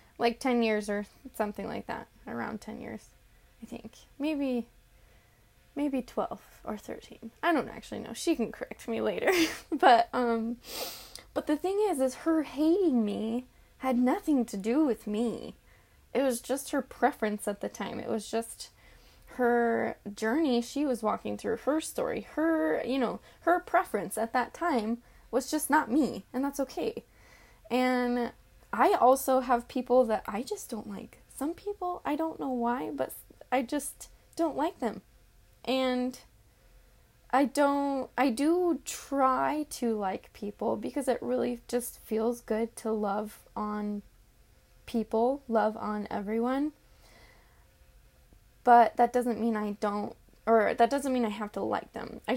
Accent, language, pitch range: American, English, 225-285 Hz